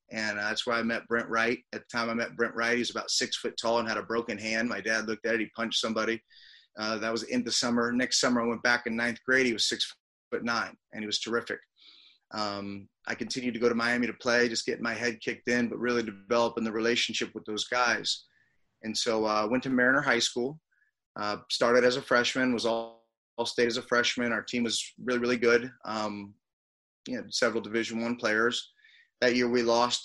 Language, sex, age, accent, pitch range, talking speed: English, male, 30-49, American, 110-120 Hz, 230 wpm